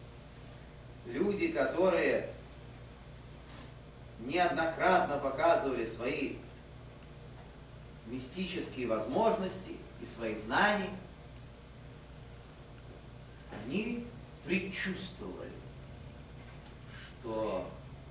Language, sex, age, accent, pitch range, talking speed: Russian, male, 30-49, native, 125-165 Hz, 45 wpm